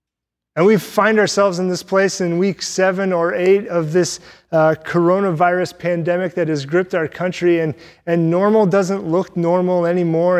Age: 30-49